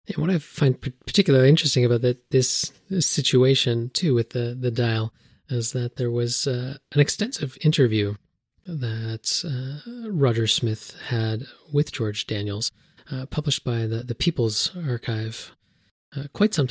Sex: male